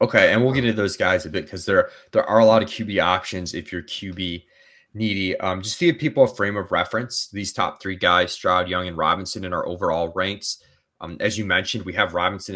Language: English